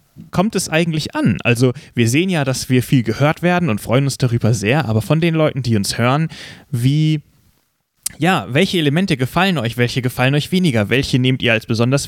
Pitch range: 115-150 Hz